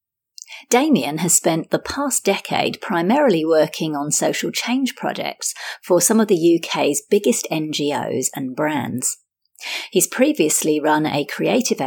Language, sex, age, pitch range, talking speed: English, female, 40-59, 155-230 Hz, 130 wpm